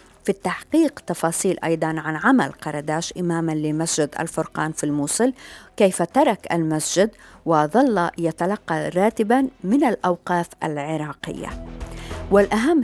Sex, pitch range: female, 155-185 Hz